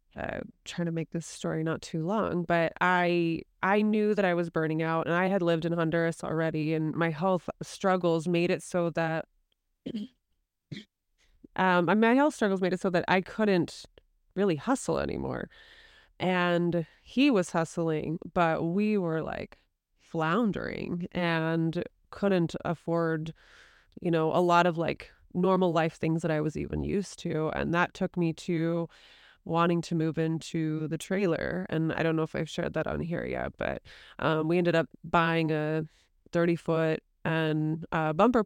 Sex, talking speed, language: female, 165 wpm, English